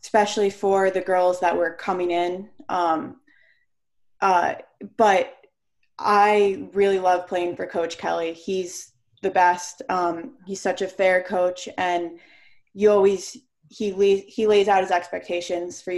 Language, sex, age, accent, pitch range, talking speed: English, female, 20-39, American, 175-200 Hz, 140 wpm